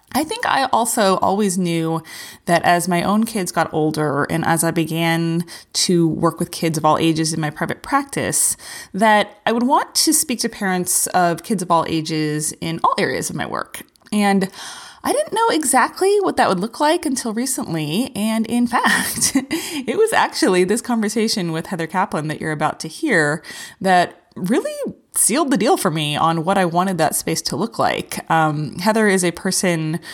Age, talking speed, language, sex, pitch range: 20-39, 190 wpm, English, female, 165-225 Hz